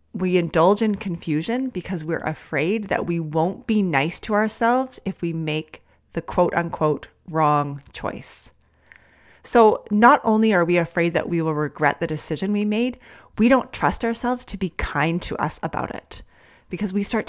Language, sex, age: English, female, 30-49